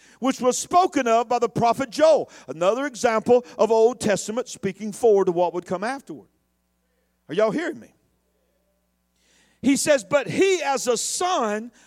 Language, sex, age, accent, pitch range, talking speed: English, male, 50-69, American, 190-275 Hz, 155 wpm